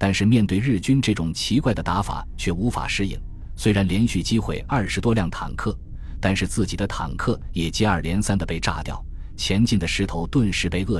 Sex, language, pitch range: male, Chinese, 80-110 Hz